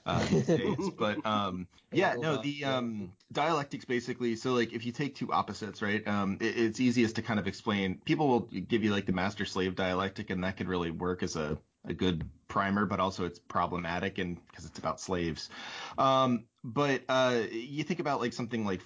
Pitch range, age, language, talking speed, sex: 90-115 Hz, 30-49, English, 195 wpm, male